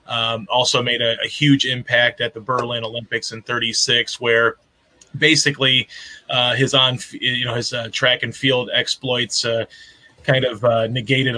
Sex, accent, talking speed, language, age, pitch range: male, American, 165 wpm, English, 20-39, 120-135 Hz